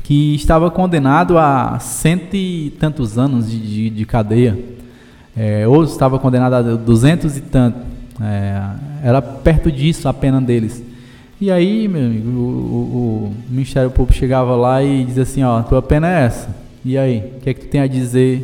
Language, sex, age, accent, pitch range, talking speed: Portuguese, male, 20-39, Brazilian, 130-170 Hz, 190 wpm